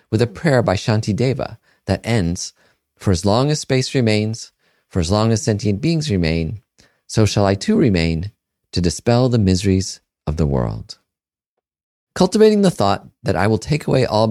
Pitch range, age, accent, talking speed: 90-120 Hz, 40-59, American, 170 wpm